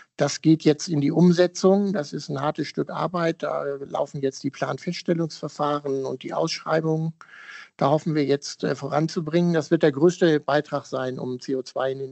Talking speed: 175 wpm